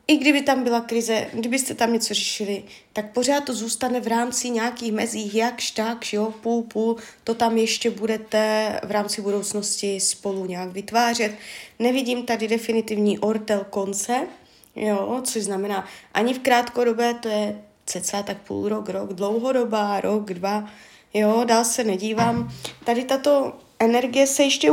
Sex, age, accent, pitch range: female, 20-39, native, 210-255 Hz